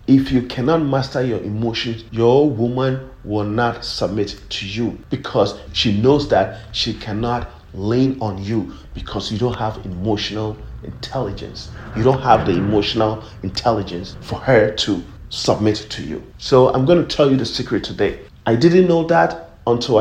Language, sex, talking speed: English, male, 160 wpm